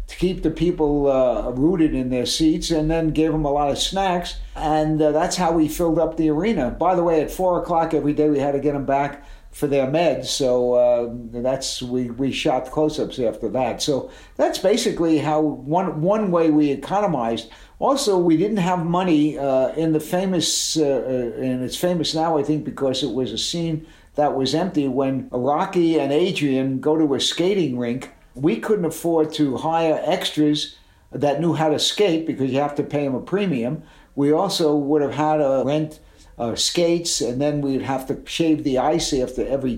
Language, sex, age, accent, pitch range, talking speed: English, male, 60-79, American, 135-165 Hz, 200 wpm